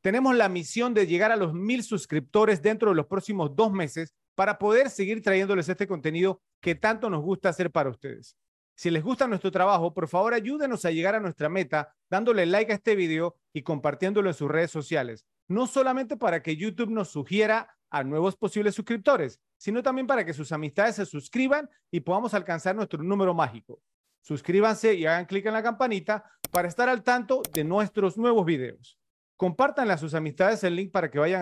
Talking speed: 195 wpm